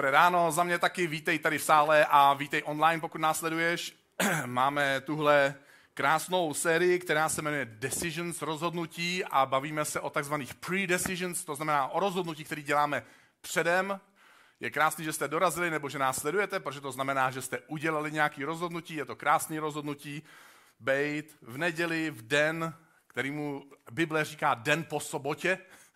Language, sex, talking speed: Czech, male, 155 wpm